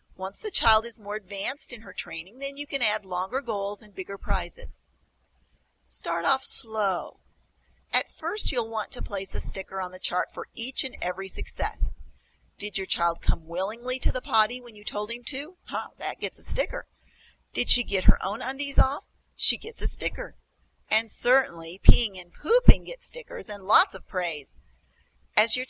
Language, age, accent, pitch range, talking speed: English, 40-59, American, 175-250 Hz, 185 wpm